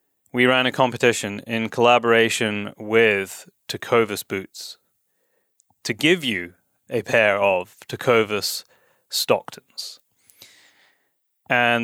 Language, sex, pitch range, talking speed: English, male, 110-135 Hz, 90 wpm